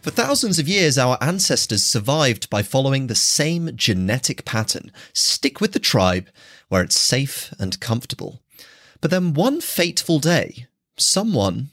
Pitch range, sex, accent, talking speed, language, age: 110-170 Hz, male, British, 145 wpm, English, 30-49